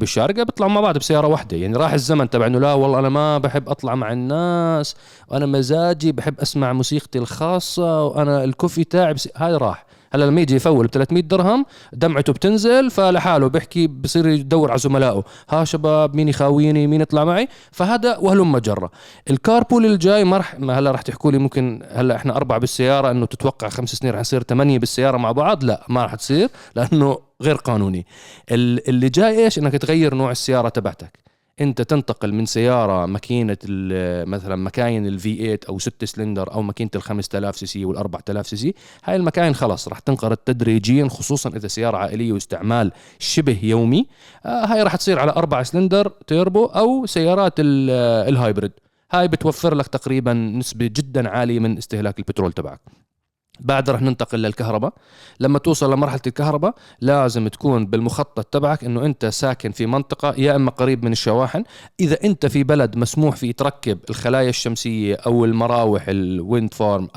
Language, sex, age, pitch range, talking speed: Arabic, male, 20-39, 115-155 Hz, 160 wpm